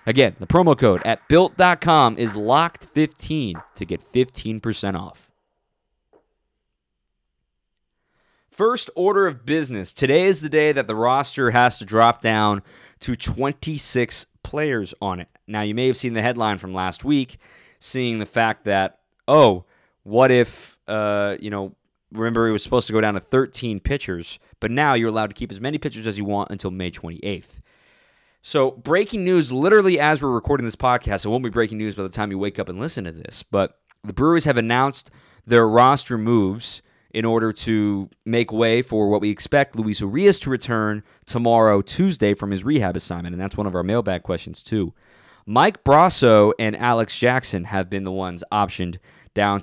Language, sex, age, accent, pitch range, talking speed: English, male, 20-39, American, 100-130 Hz, 180 wpm